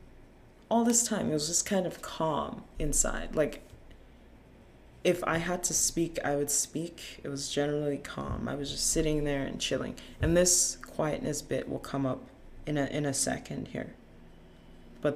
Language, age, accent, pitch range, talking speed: English, 20-39, American, 135-165 Hz, 175 wpm